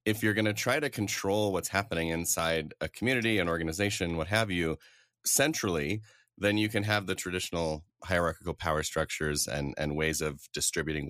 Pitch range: 80-105 Hz